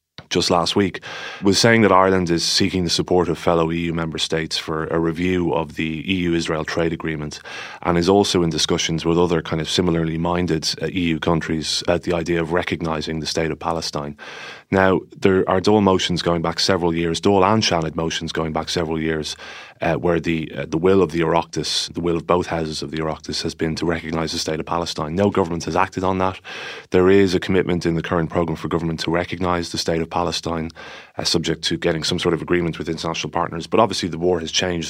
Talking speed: 220 wpm